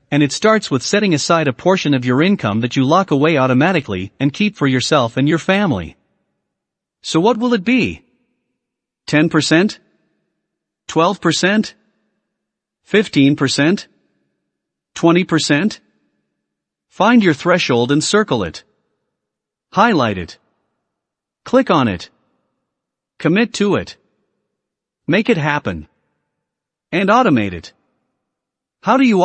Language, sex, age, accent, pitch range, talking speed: English, male, 40-59, American, 130-185 Hz, 115 wpm